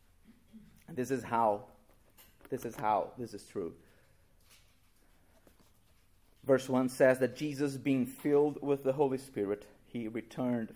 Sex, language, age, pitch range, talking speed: male, English, 30-49, 110-155 Hz, 125 wpm